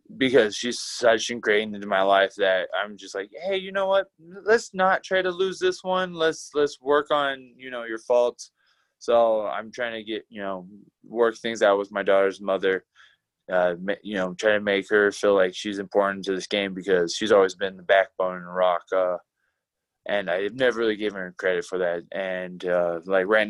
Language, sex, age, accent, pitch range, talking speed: English, male, 20-39, American, 100-120 Hz, 205 wpm